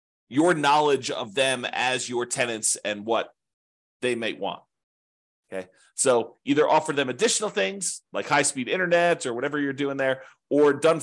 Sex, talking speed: male, 165 wpm